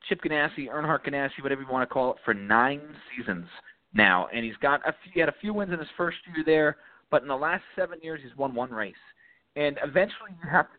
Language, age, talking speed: English, 30-49, 245 wpm